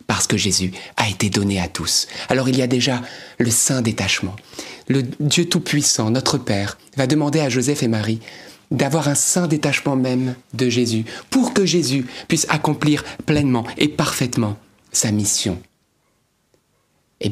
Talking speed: 150 wpm